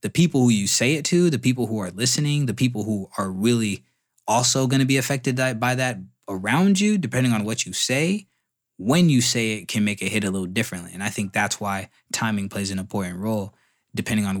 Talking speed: 225 wpm